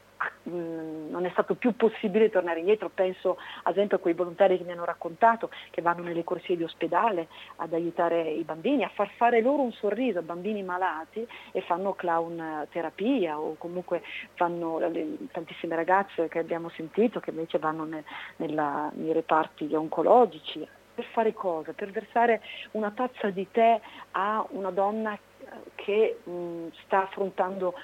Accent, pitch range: native, 170-215 Hz